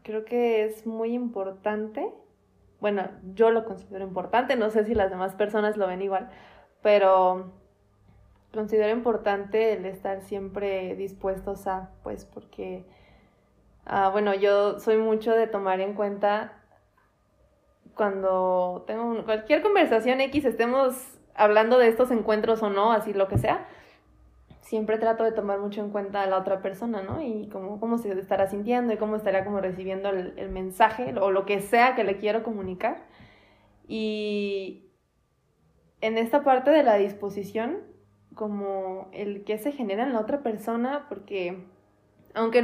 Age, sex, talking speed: 20-39, female, 150 wpm